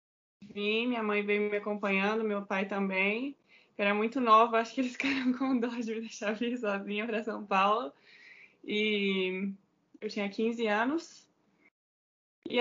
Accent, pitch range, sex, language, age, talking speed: Brazilian, 205-255 Hz, female, Portuguese, 20-39, 155 wpm